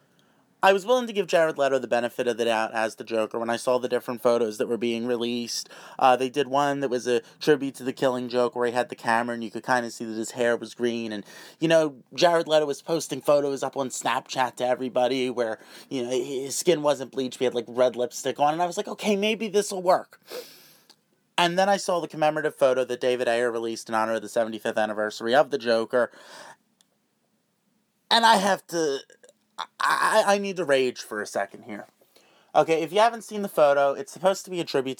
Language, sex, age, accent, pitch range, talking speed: English, male, 30-49, American, 125-200 Hz, 230 wpm